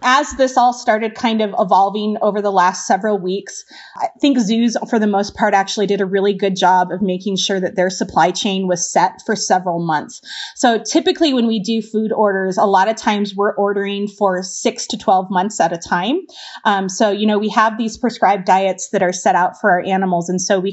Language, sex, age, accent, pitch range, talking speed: English, female, 30-49, American, 185-220 Hz, 225 wpm